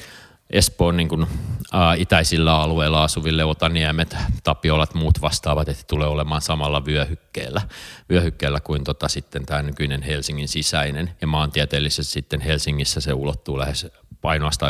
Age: 30-49